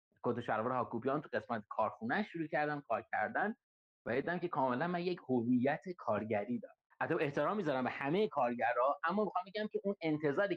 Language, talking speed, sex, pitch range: Persian, 165 wpm, male, 125-185 Hz